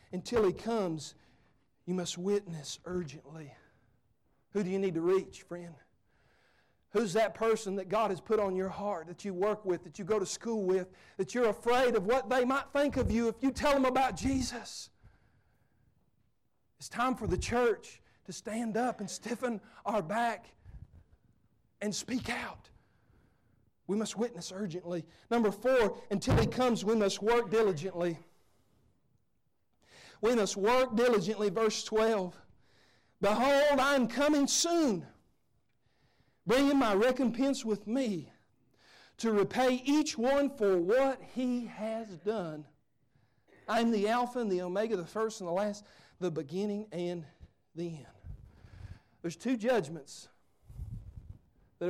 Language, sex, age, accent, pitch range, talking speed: English, male, 40-59, American, 175-235 Hz, 145 wpm